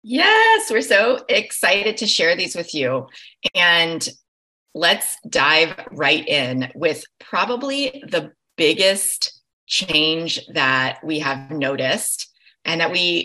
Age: 30-49